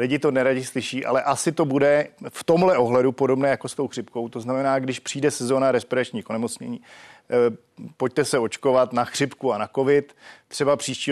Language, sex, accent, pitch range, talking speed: Czech, male, native, 120-140 Hz, 180 wpm